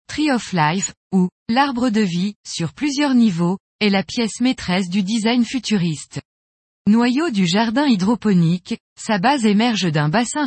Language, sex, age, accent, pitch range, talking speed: French, female, 20-39, French, 180-240 Hz, 150 wpm